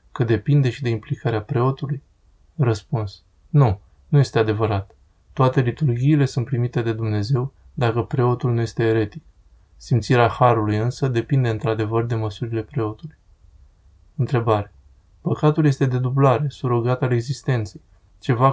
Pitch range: 110-135 Hz